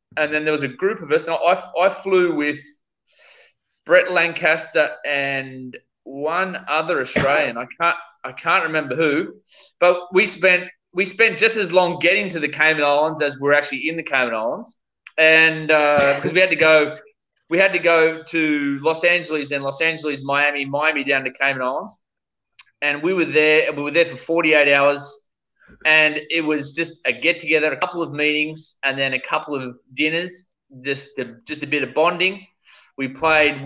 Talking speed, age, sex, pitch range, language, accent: 185 wpm, 20-39, male, 140-170 Hz, English, Australian